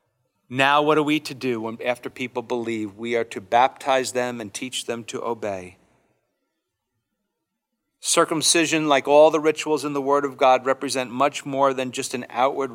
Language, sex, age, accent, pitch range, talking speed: English, male, 40-59, American, 125-150 Hz, 170 wpm